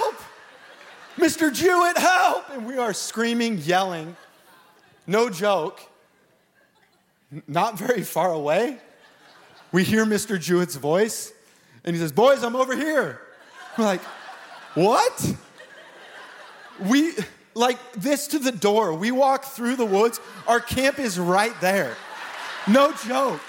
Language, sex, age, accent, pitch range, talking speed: English, male, 30-49, American, 175-250 Hz, 120 wpm